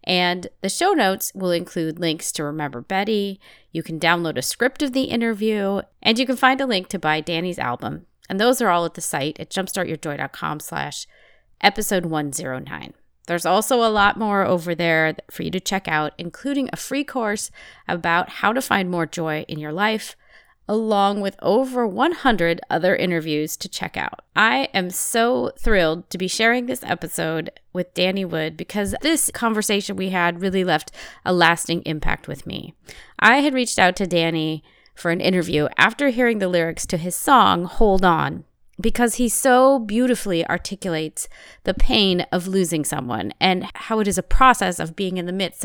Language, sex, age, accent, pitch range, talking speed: English, female, 30-49, American, 165-215 Hz, 180 wpm